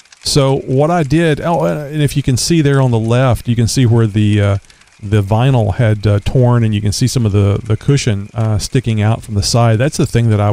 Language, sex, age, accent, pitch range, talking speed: English, male, 40-59, American, 105-130 Hz, 255 wpm